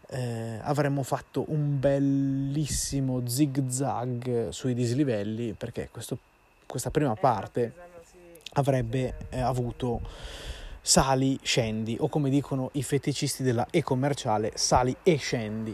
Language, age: Italian, 30-49